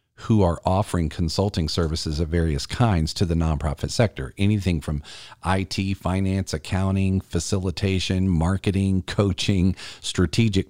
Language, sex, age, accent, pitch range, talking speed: English, male, 40-59, American, 85-100 Hz, 120 wpm